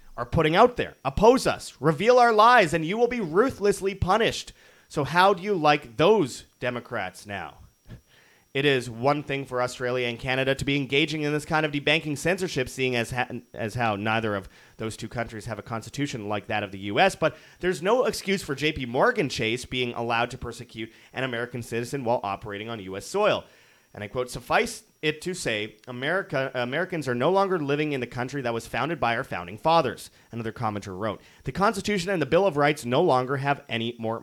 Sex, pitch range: male, 110-150 Hz